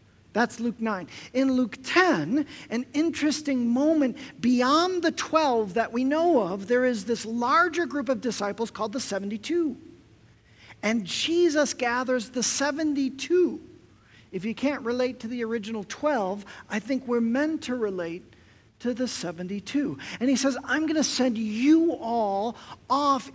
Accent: American